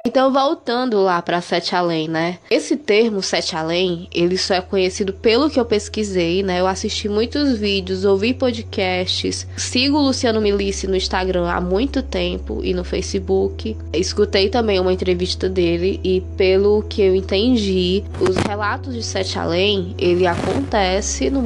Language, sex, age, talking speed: Portuguese, female, 10-29, 155 wpm